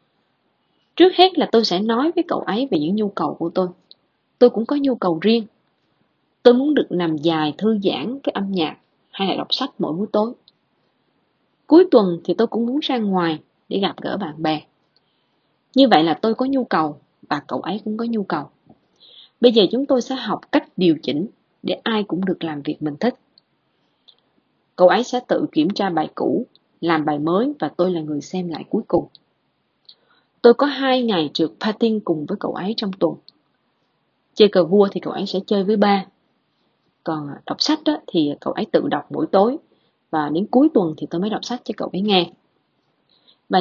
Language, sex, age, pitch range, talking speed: Vietnamese, female, 20-39, 170-245 Hz, 205 wpm